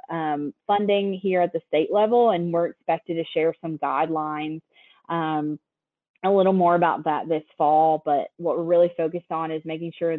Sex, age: female, 20-39